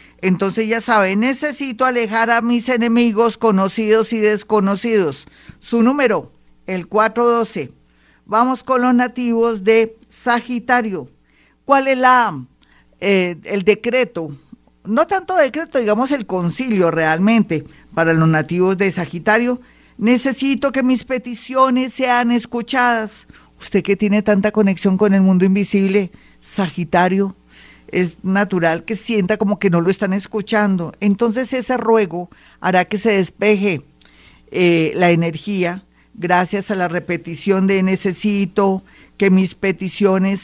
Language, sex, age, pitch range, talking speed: Spanish, female, 50-69, 185-235 Hz, 125 wpm